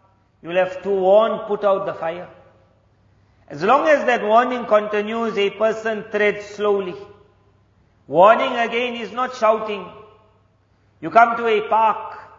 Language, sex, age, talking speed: English, male, 50-69, 140 wpm